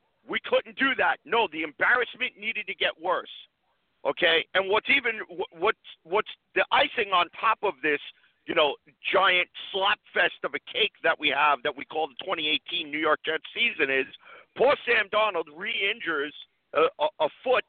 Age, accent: 50-69, American